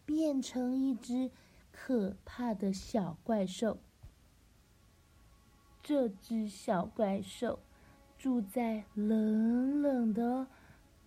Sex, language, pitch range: female, Chinese, 210-300 Hz